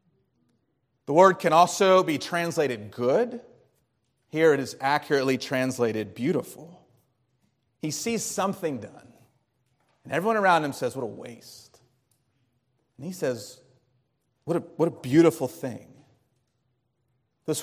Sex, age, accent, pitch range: male, 30-49, American, 125-170 Hz